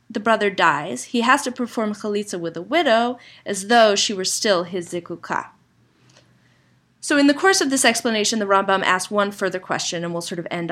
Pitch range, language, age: 180-235 Hz, English, 30-49